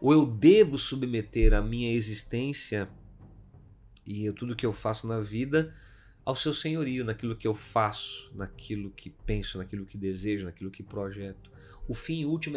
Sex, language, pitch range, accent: male, Portuguese, 100-125 Hz, Brazilian